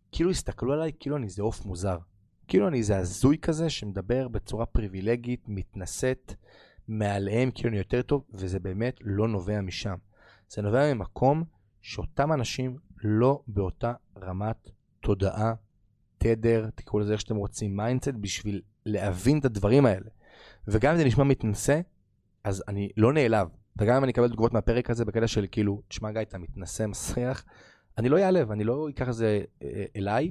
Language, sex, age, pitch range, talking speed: Hebrew, male, 30-49, 100-125 Hz, 155 wpm